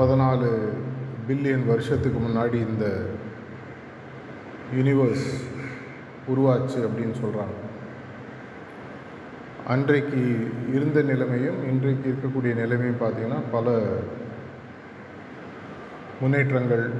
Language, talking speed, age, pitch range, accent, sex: Tamil, 65 wpm, 30-49, 115-135 Hz, native, male